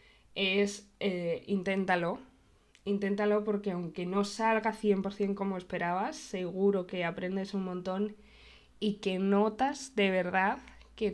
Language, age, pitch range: Spanish, 20-39, 180-205 Hz